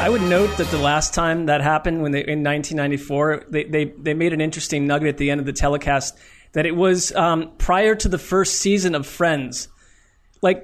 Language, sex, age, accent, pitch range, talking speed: English, male, 30-49, American, 145-185 Hz, 215 wpm